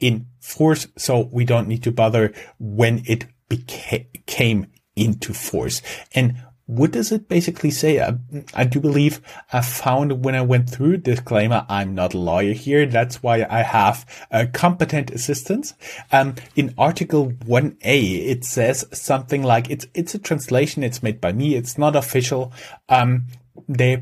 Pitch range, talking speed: 120-140 Hz, 160 wpm